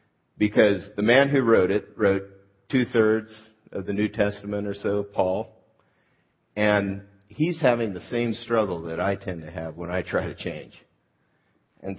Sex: male